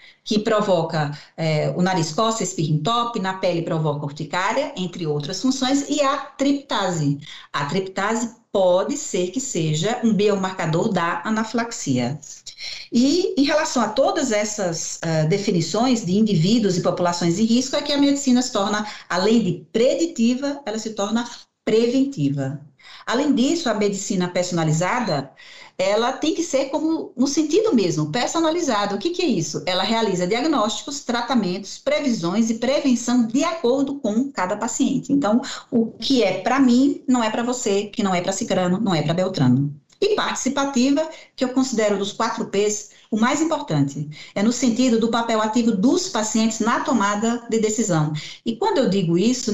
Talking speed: 160 wpm